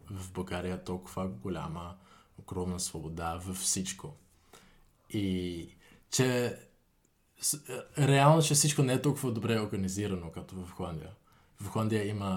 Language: Bulgarian